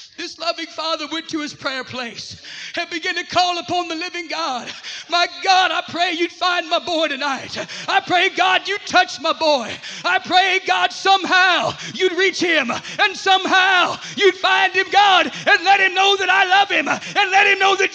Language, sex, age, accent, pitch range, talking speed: English, male, 40-59, American, 270-375 Hz, 195 wpm